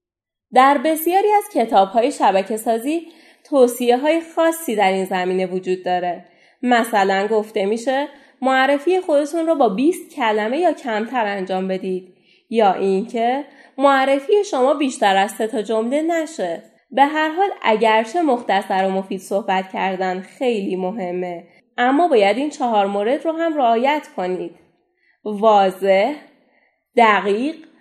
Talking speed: 125 wpm